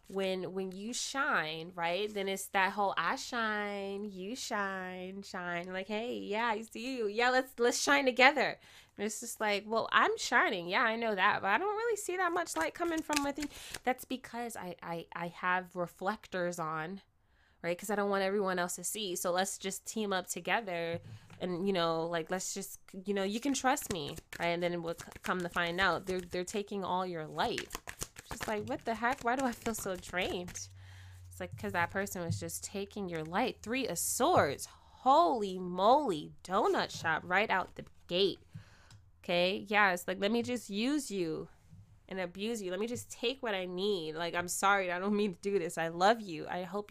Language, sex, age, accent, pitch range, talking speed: English, female, 20-39, American, 170-220 Hz, 205 wpm